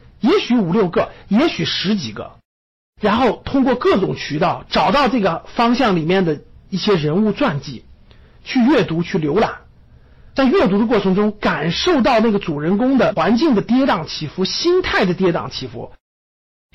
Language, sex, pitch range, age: Chinese, male, 145-235 Hz, 50-69